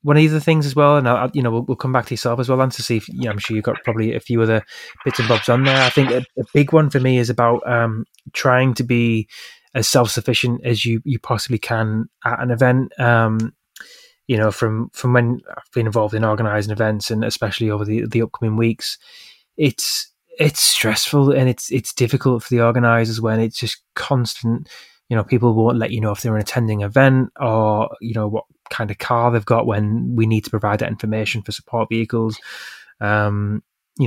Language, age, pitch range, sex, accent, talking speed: English, 20-39, 110-125 Hz, male, British, 225 wpm